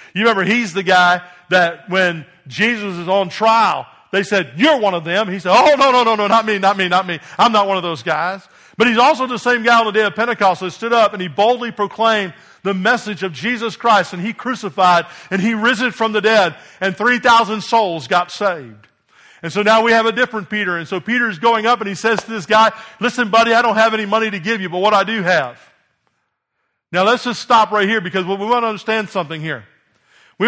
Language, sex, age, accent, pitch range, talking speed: English, male, 50-69, American, 190-230 Hz, 240 wpm